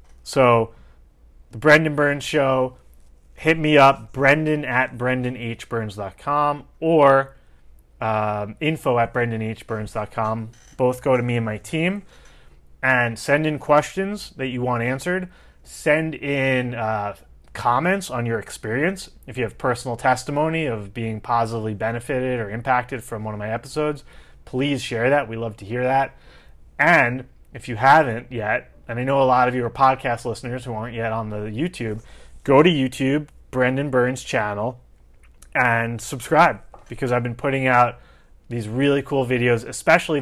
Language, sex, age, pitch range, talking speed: English, male, 30-49, 110-135 Hz, 150 wpm